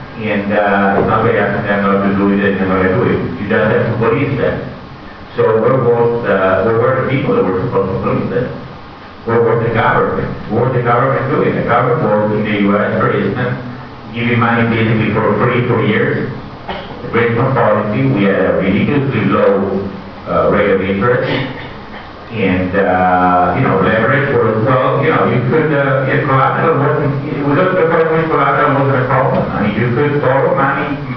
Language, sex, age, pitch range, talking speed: Italian, male, 50-69, 100-125 Hz, 185 wpm